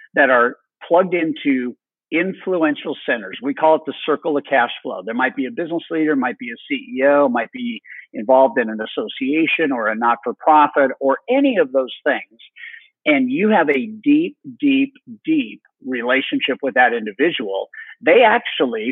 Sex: male